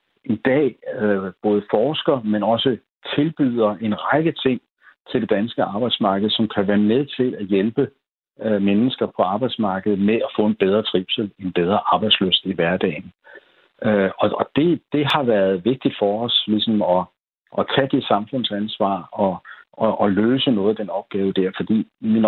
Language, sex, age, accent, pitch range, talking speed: Danish, male, 60-79, native, 100-130 Hz, 170 wpm